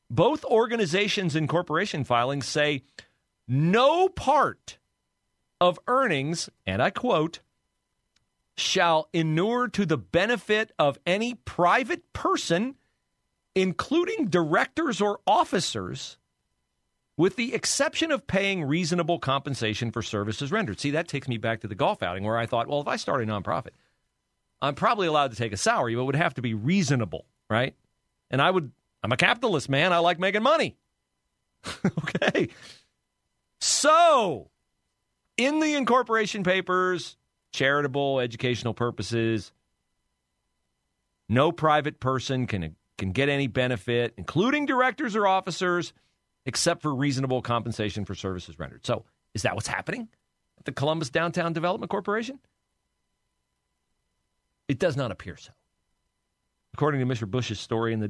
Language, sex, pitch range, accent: English, male, 115-190 Hz, American